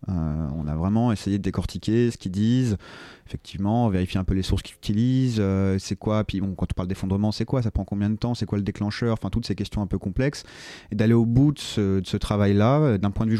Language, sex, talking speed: French, male, 260 wpm